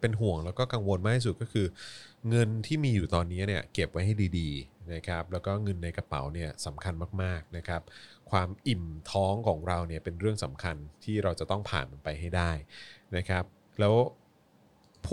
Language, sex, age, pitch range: Thai, male, 30-49, 85-110 Hz